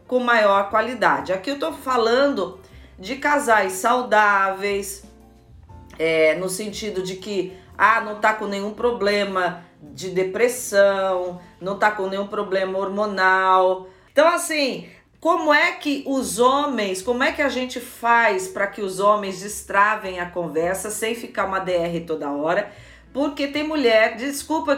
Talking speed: 145 wpm